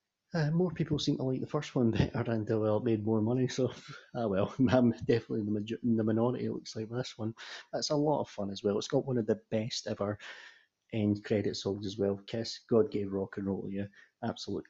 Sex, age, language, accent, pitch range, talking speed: male, 30-49, English, British, 105-125 Hz, 230 wpm